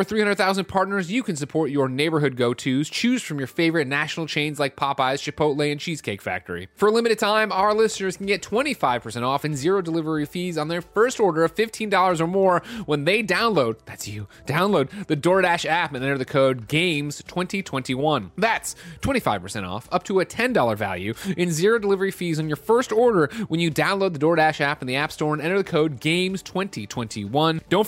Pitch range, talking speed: 135-200 Hz, 190 wpm